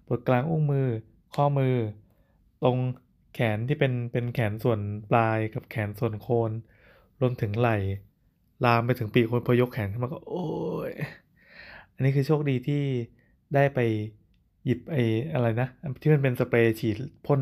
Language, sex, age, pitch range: Thai, male, 20-39, 110-135 Hz